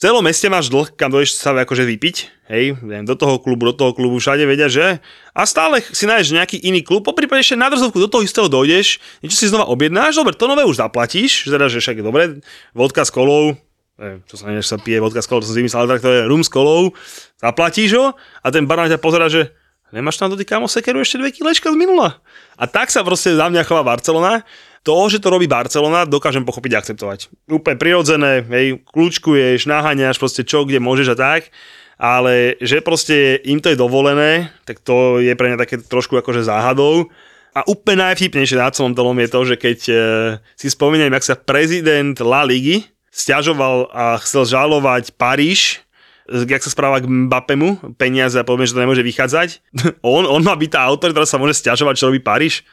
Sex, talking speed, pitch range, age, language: male, 205 wpm, 125-165 Hz, 20-39, Slovak